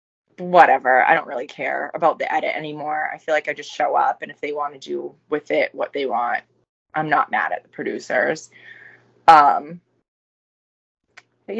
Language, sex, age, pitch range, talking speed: English, female, 20-39, 155-185 Hz, 180 wpm